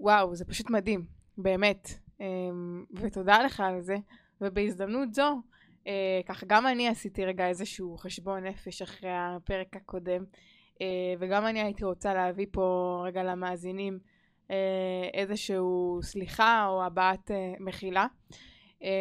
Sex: female